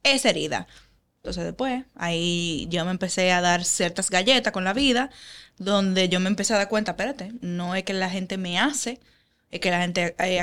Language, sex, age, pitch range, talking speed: Spanish, female, 10-29, 180-235 Hz, 200 wpm